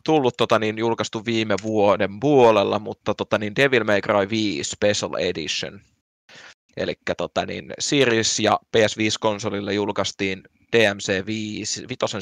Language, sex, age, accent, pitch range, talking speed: Finnish, male, 20-39, native, 100-110 Hz, 125 wpm